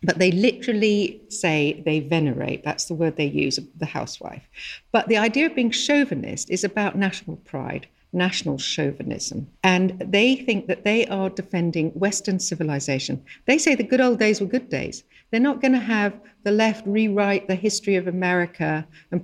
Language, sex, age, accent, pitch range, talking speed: English, female, 50-69, British, 160-210 Hz, 170 wpm